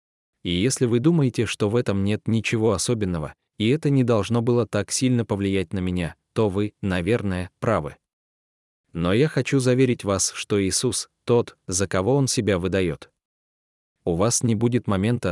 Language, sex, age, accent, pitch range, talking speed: Russian, male, 20-39, native, 90-120 Hz, 165 wpm